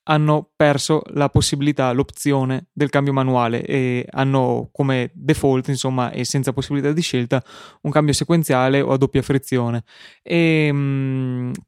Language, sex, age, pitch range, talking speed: Italian, male, 20-39, 130-150 Hz, 140 wpm